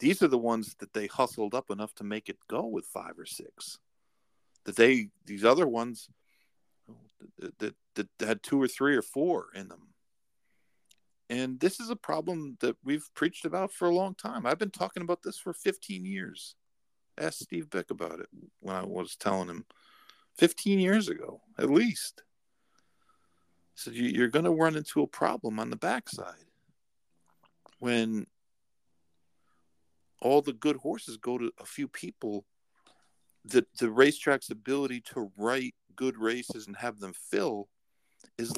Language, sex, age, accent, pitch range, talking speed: English, male, 50-69, American, 100-155 Hz, 165 wpm